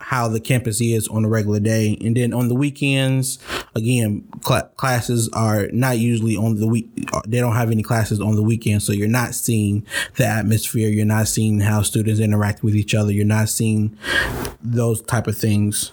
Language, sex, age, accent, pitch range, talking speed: English, male, 20-39, American, 110-130 Hz, 190 wpm